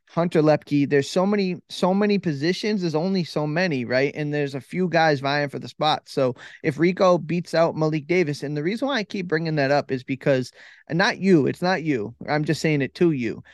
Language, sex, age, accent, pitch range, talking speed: English, male, 20-39, American, 145-175 Hz, 230 wpm